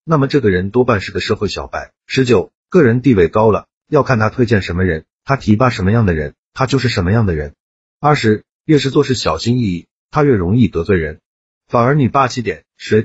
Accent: native